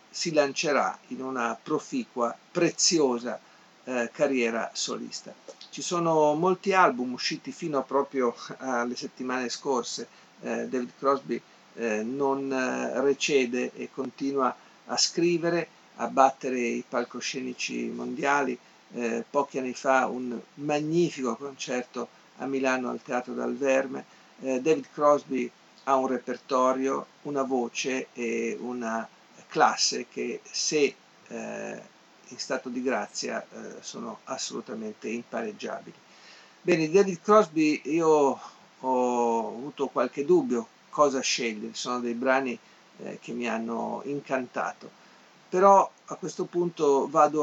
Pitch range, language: 125-150 Hz, Italian